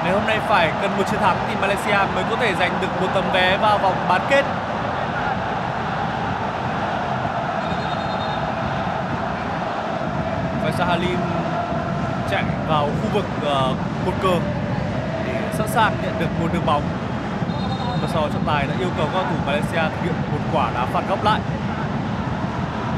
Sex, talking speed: male, 150 wpm